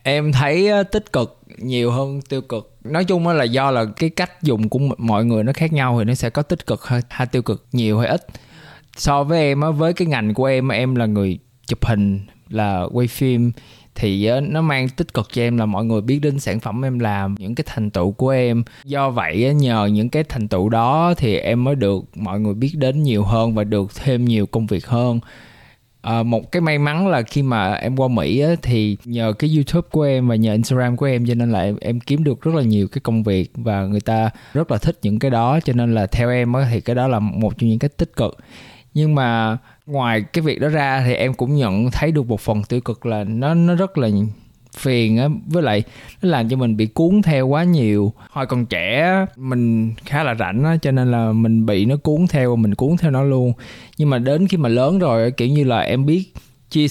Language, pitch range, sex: Vietnamese, 110-140 Hz, male